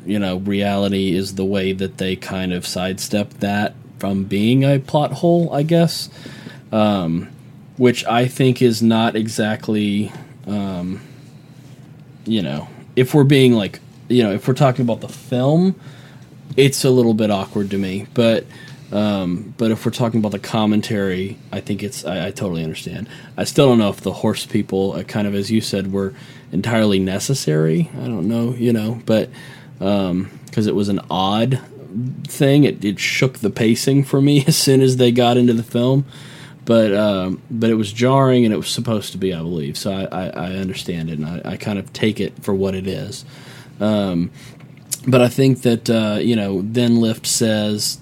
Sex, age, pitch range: male, 20-39, 105-135 Hz